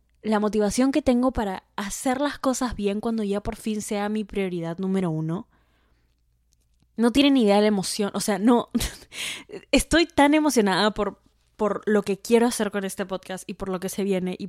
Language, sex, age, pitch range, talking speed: Spanish, female, 10-29, 170-210 Hz, 195 wpm